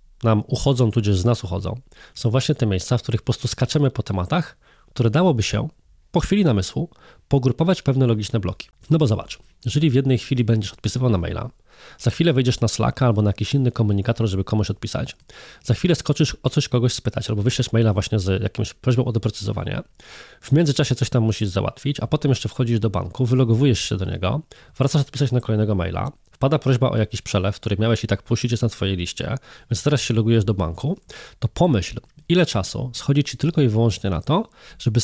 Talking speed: 205 wpm